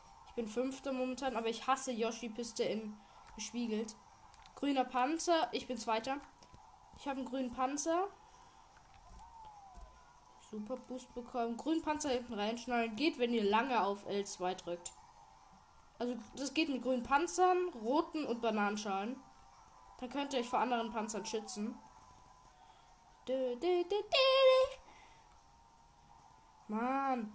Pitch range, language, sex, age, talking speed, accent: 225-295 Hz, German, female, 10-29, 115 wpm, German